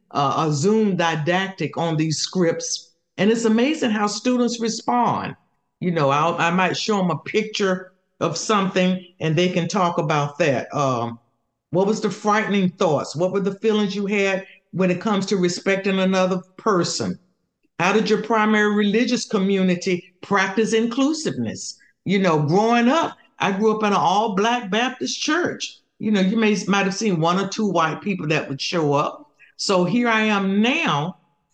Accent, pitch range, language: American, 170-215 Hz, English